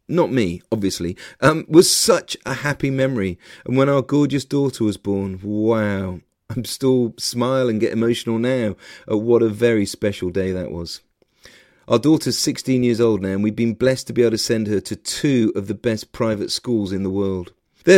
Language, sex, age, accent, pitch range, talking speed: English, male, 40-59, British, 115-150 Hz, 200 wpm